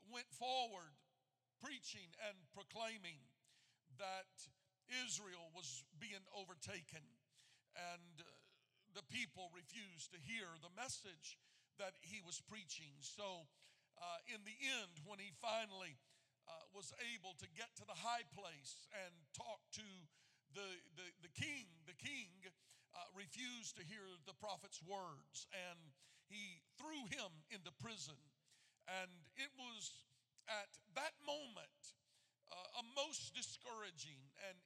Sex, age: male, 50-69